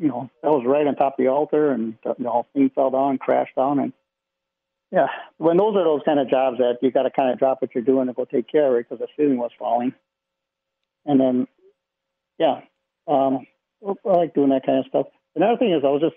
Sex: male